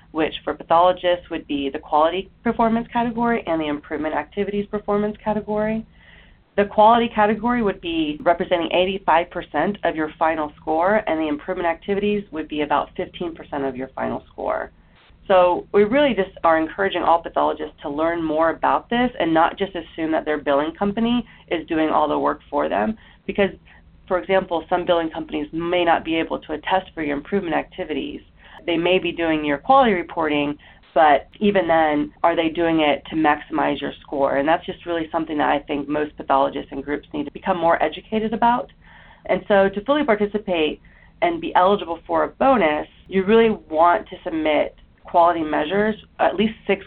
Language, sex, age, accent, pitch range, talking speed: English, female, 30-49, American, 155-200 Hz, 180 wpm